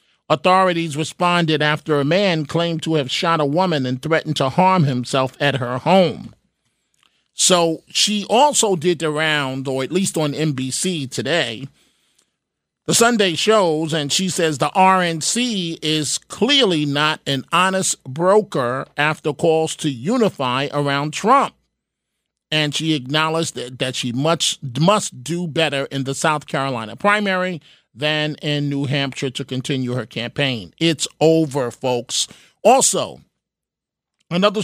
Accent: American